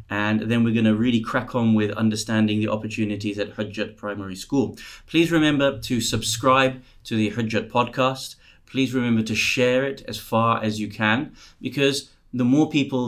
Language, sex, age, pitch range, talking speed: English, male, 30-49, 110-125 Hz, 175 wpm